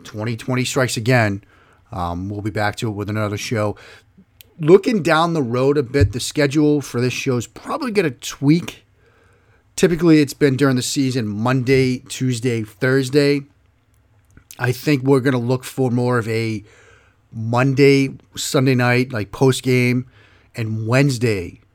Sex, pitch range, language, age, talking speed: male, 105-130 Hz, English, 30-49, 150 wpm